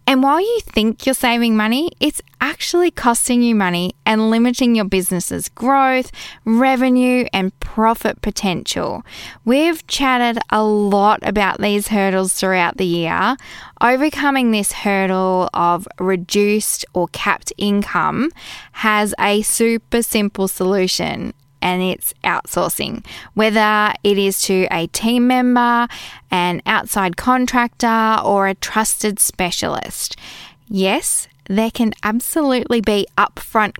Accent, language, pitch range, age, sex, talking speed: Australian, English, 190-240 Hz, 10-29, female, 120 wpm